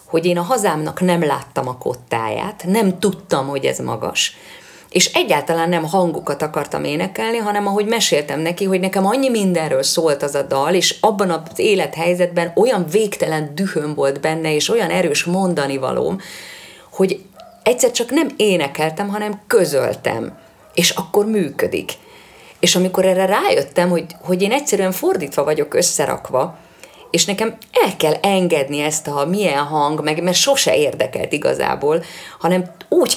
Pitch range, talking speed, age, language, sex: 160-205 Hz, 150 wpm, 30-49, Hungarian, female